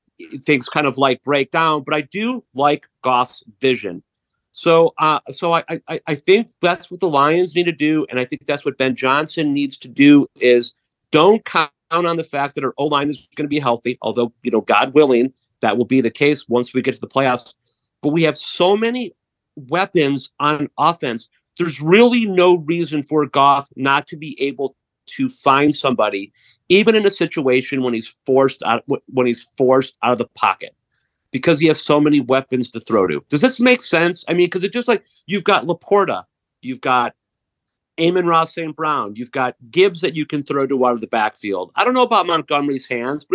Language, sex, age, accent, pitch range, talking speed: English, male, 40-59, American, 130-170 Hz, 205 wpm